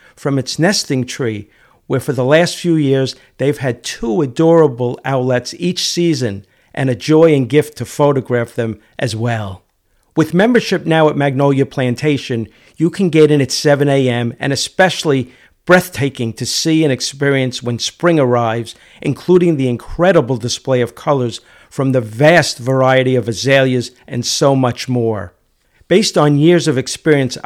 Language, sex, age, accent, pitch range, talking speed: English, male, 50-69, American, 125-150 Hz, 155 wpm